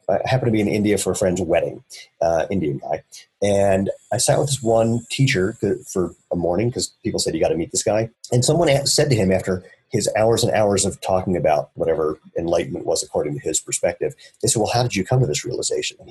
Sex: male